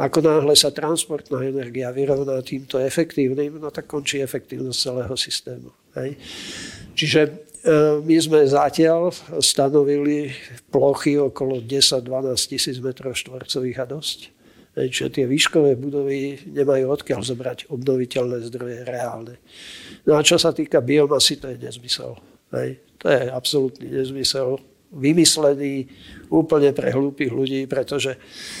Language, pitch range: Czech, 130-150 Hz